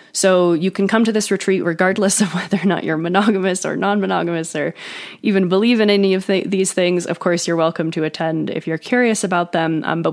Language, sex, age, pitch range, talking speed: English, female, 20-39, 160-195 Hz, 225 wpm